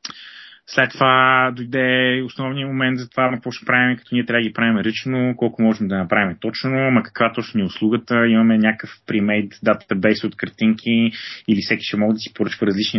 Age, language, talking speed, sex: 20-39, Bulgarian, 195 wpm, male